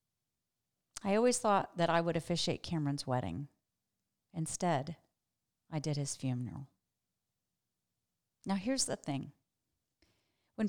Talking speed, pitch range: 105 wpm, 140-200 Hz